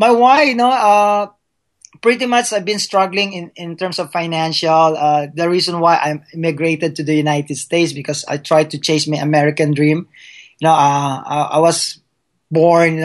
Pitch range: 150-170 Hz